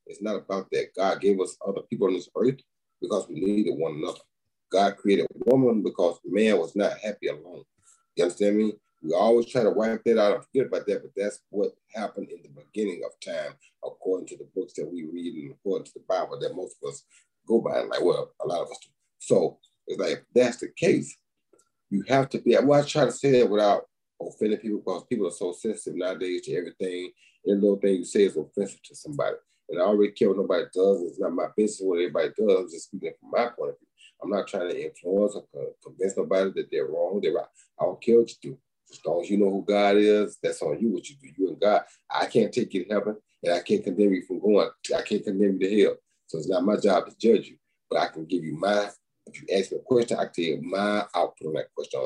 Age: 30-49